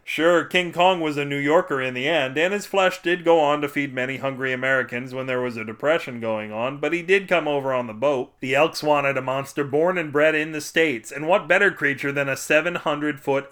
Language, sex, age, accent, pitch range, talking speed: English, male, 40-59, American, 130-160 Hz, 240 wpm